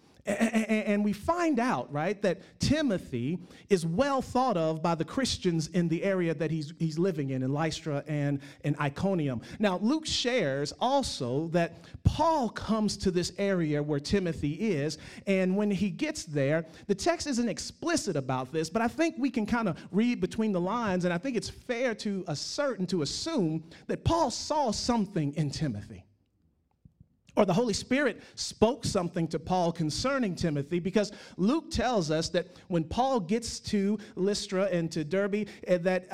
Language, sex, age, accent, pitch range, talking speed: English, male, 40-59, American, 160-215 Hz, 170 wpm